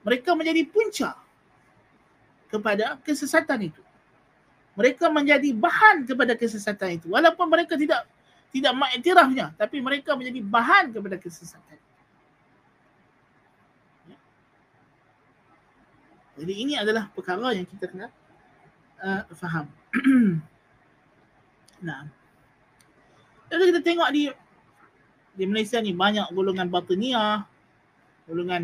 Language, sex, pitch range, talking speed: Malay, male, 190-290 Hz, 95 wpm